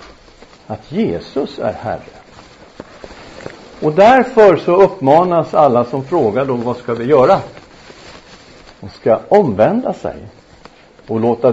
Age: 50-69